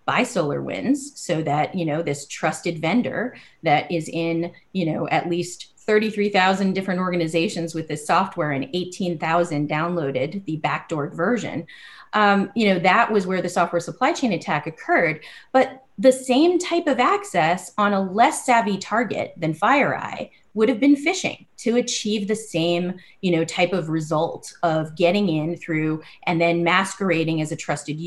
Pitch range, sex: 160-200 Hz, female